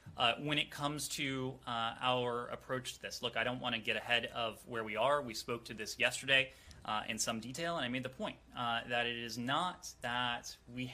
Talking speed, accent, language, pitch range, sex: 230 wpm, American, English, 120-150 Hz, male